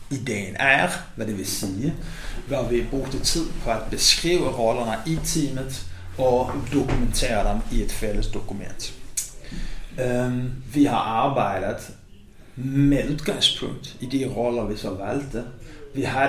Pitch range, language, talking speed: 105-135 Hz, Danish, 140 wpm